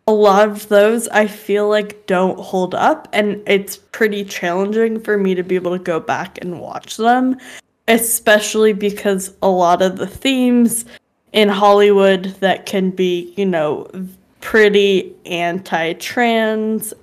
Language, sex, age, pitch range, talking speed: English, female, 10-29, 185-220 Hz, 145 wpm